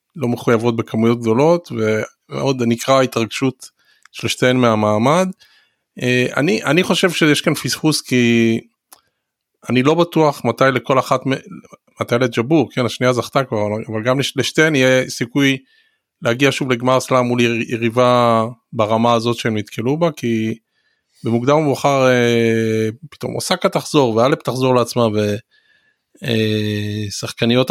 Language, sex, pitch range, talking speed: Hebrew, male, 115-145 Hz, 120 wpm